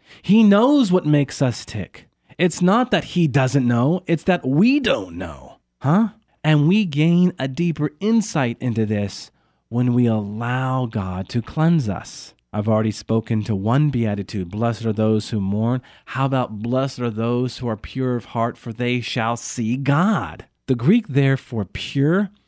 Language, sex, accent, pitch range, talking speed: English, male, American, 115-160 Hz, 170 wpm